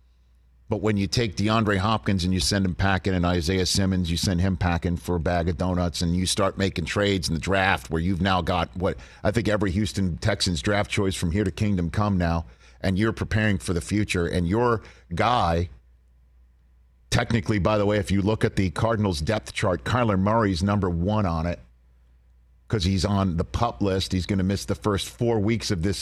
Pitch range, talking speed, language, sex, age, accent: 85-110 Hz, 210 wpm, English, male, 50-69, American